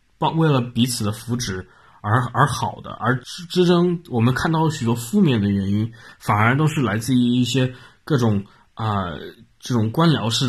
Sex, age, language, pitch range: male, 20-39, Chinese, 105-125 Hz